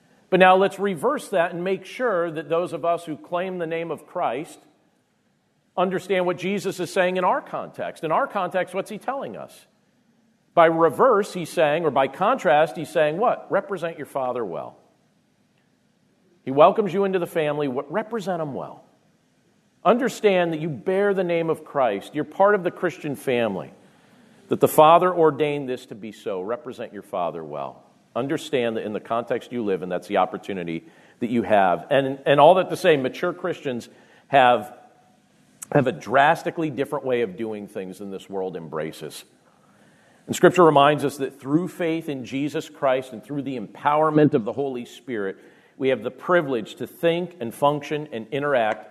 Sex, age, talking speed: male, 50-69, 180 wpm